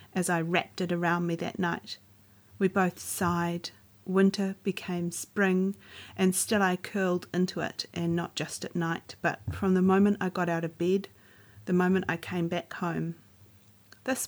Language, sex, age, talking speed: English, female, 40-59, 170 wpm